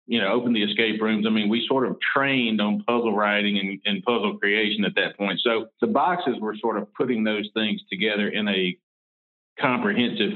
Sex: male